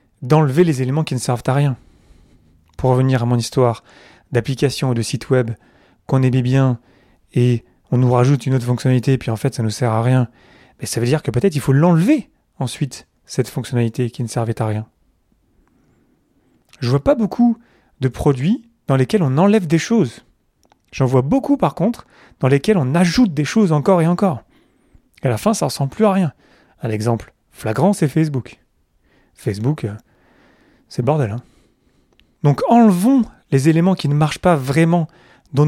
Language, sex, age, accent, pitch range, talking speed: French, male, 30-49, French, 125-165 Hz, 185 wpm